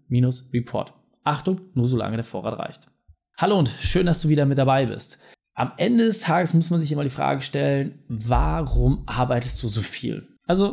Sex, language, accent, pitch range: male, German, German, 125-175 Hz